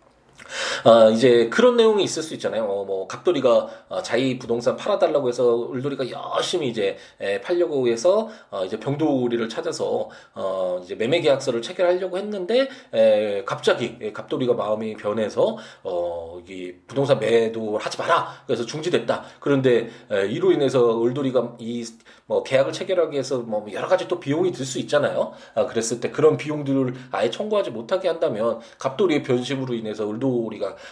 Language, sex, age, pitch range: Korean, male, 20-39, 115-180 Hz